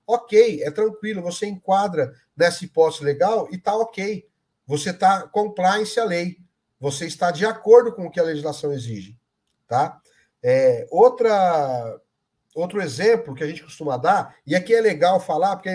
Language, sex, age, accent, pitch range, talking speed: Portuguese, male, 50-69, Brazilian, 150-215 Hz, 150 wpm